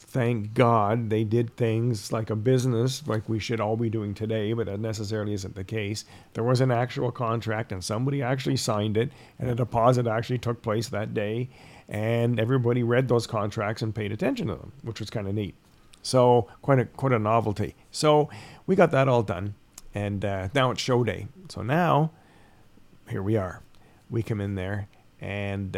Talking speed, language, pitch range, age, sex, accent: 190 wpm, English, 105-130 Hz, 40-59, male, American